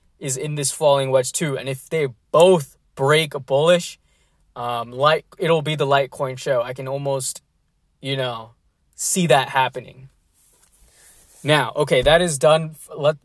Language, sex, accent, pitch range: English, male, American, 135-170 Hz